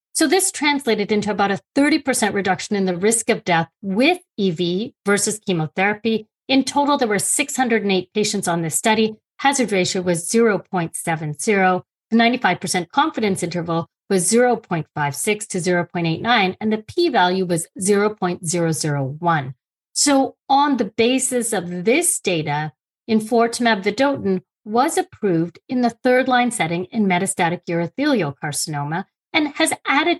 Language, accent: English, American